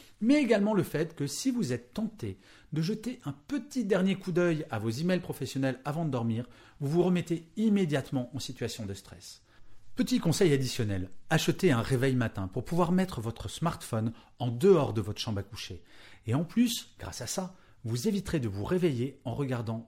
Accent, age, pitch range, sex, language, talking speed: French, 40-59, 105-170 Hz, male, French, 190 wpm